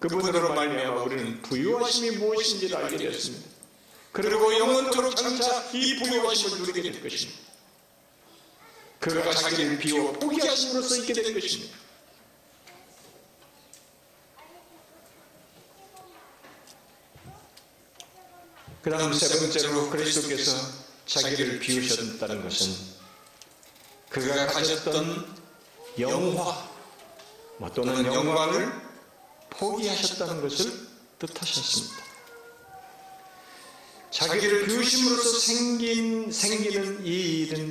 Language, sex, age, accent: Korean, male, 40-59, native